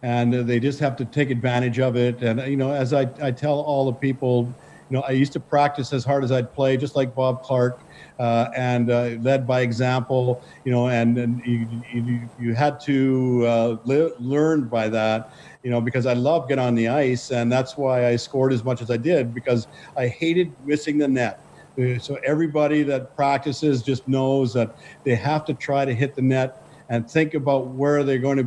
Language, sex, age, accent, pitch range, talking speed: English, male, 50-69, American, 120-145 Hz, 210 wpm